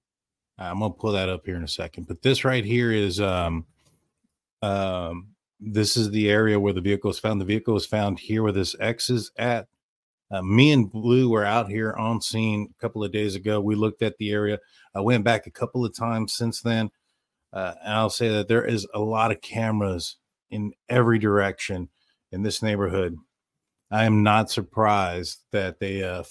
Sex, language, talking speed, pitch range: male, English, 200 wpm, 95-110 Hz